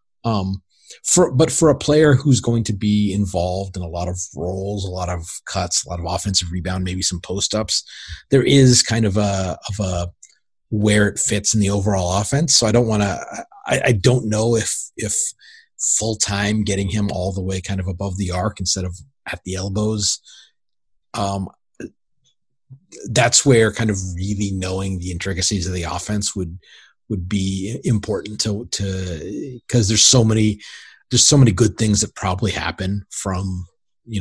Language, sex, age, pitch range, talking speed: English, male, 30-49, 95-110 Hz, 180 wpm